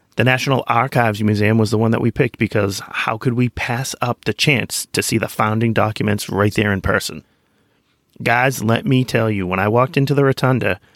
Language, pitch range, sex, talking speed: English, 100-115 Hz, male, 210 wpm